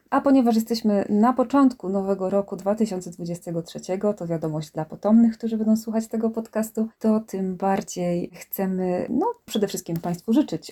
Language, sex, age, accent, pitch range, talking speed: Polish, female, 20-39, native, 180-230 Hz, 145 wpm